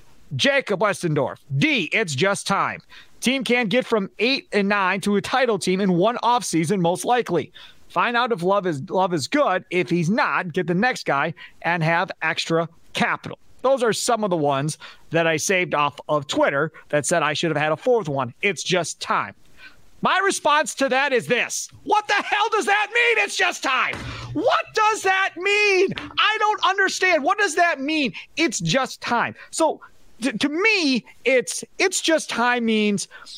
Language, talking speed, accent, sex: English, 185 wpm, American, male